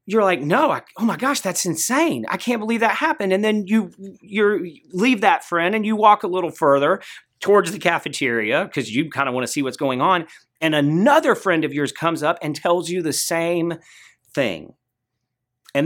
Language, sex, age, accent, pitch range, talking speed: English, male, 40-59, American, 150-215 Hz, 205 wpm